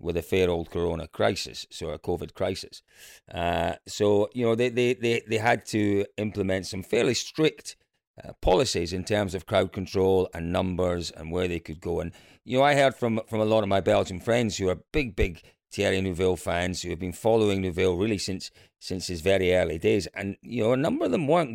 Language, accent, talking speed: English, British, 215 wpm